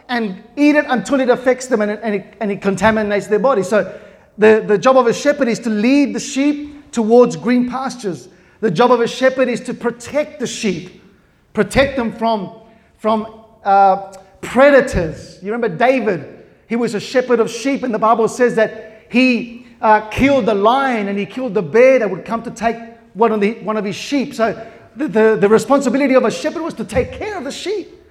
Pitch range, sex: 220-265 Hz, male